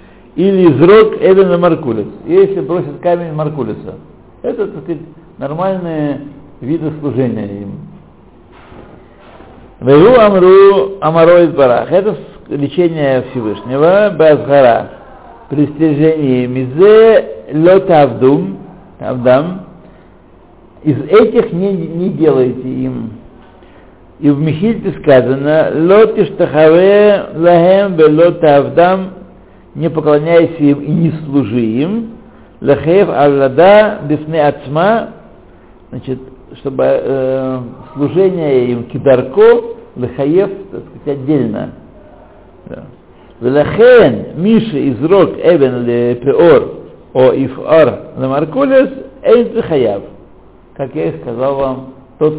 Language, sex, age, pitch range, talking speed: Russian, male, 60-79, 135-190 Hz, 90 wpm